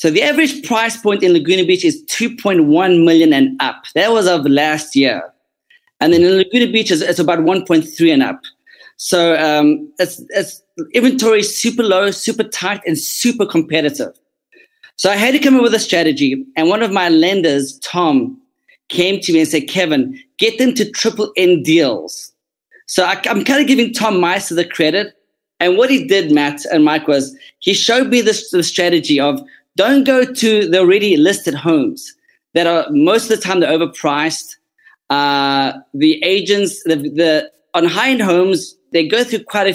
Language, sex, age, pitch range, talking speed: English, male, 20-39, 165-265 Hz, 185 wpm